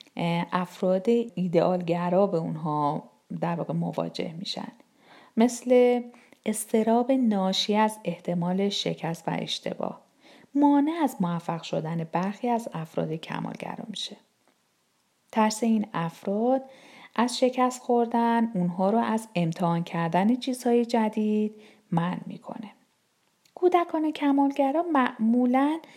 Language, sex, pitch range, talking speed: Persian, female, 180-245 Hz, 105 wpm